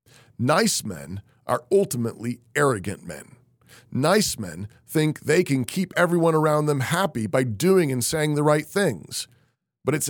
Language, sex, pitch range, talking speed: English, male, 115-155 Hz, 150 wpm